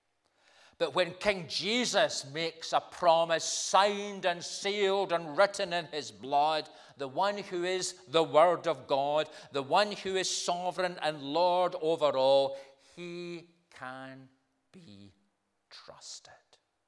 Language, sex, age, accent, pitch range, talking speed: English, male, 40-59, British, 105-165 Hz, 130 wpm